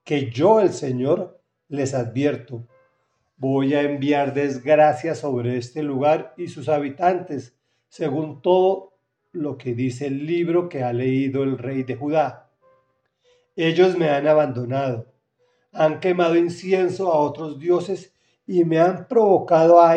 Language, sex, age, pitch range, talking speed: Spanish, male, 40-59, 130-175 Hz, 135 wpm